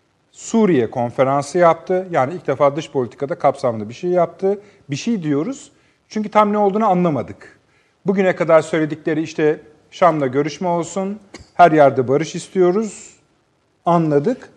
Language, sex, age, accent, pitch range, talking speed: Turkish, male, 40-59, native, 130-175 Hz, 130 wpm